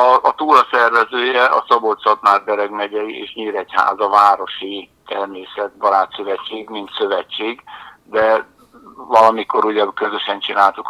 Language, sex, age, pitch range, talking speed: Hungarian, male, 60-79, 100-105 Hz, 100 wpm